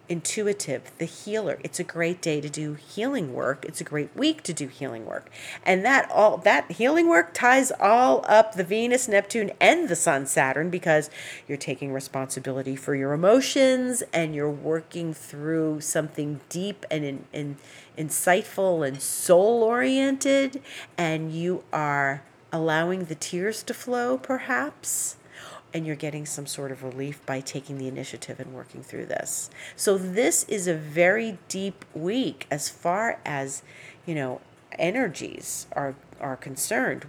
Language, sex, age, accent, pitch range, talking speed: English, female, 40-59, American, 145-185 Hz, 155 wpm